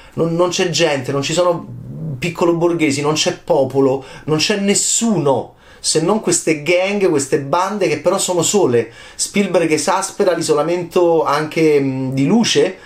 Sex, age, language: male, 30-49, Italian